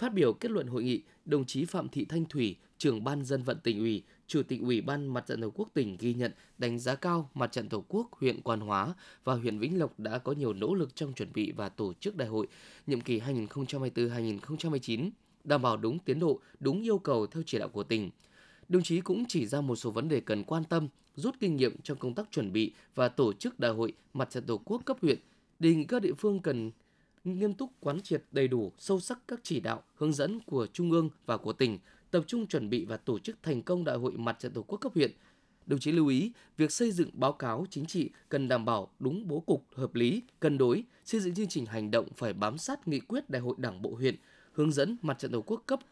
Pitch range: 120-185 Hz